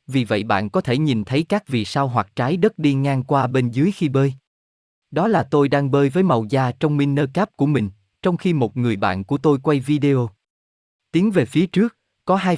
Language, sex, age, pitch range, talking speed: Vietnamese, male, 20-39, 110-155 Hz, 230 wpm